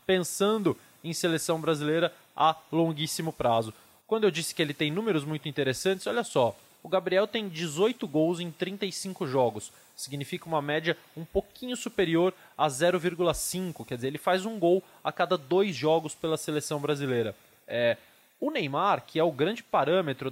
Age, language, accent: 20-39, Portuguese, Brazilian